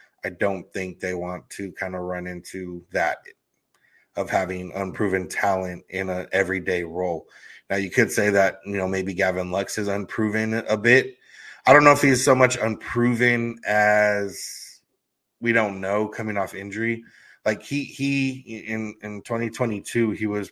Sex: male